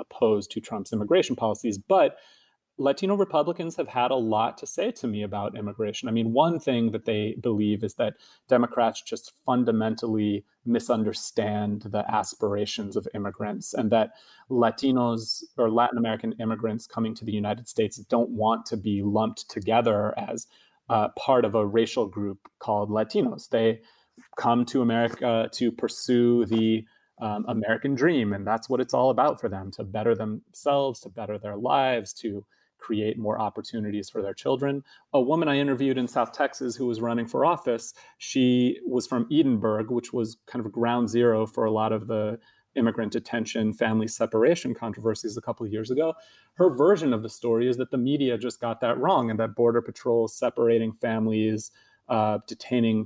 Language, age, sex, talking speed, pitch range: English, 30-49, male, 170 wpm, 110-120 Hz